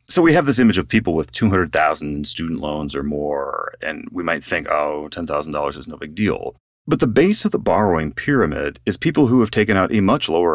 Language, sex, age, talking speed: English, male, 30-49, 220 wpm